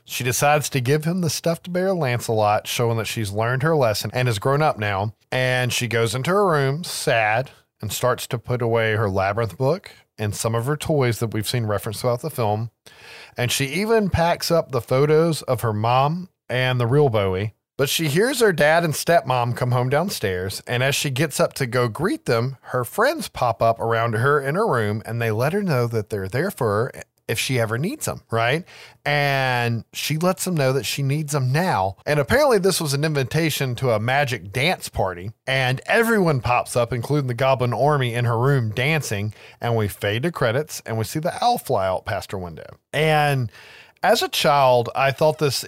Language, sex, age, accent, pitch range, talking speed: English, male, 40-59, American, 115-150 Hz, 210 wpm